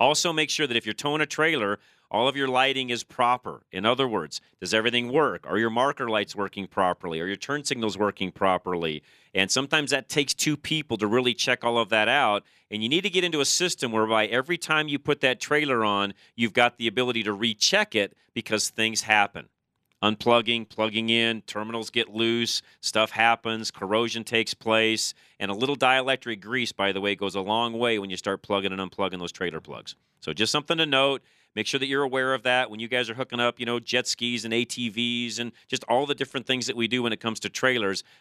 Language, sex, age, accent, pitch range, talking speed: English, male, 40-59, American, 100-125 Hz, 225 wpm